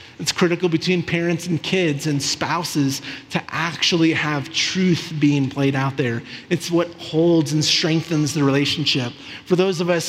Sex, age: male, 30-49